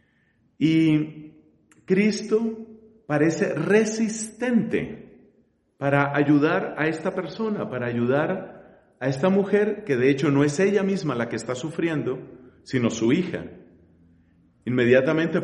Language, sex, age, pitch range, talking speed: Spanish, male, 40-59, 140-205 Hz, 115 wpm